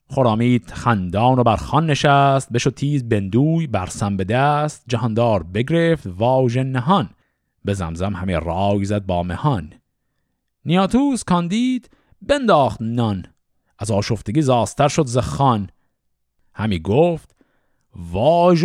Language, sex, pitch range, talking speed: Persian, male, 110-170 Hz, 110 wpm